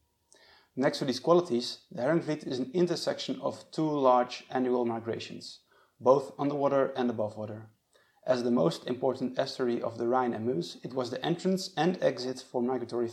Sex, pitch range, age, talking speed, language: male, 115-135 Hz, 30-49, 170 wpm, English